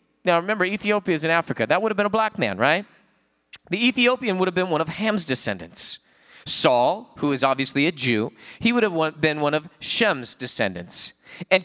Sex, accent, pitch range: male, American, 155-215 Hz